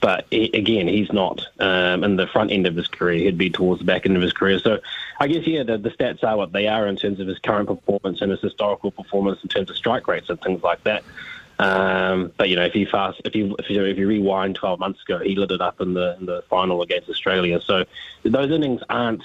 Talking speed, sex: 265 wpm, male